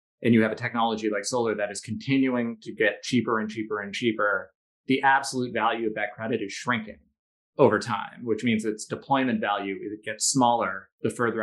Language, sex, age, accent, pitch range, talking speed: English, male, 30-49, American, 105-130 Hz, 190 wpm